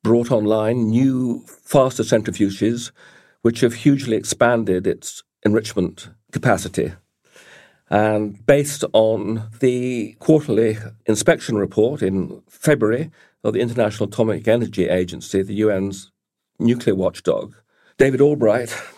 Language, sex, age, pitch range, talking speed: English, male, 50-69, 105-130 Hz, 105 wpm